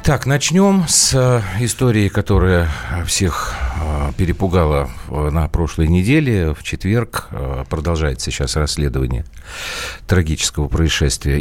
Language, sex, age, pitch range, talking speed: Russian, male, 50-69, 75-100 Hz, 90 wpm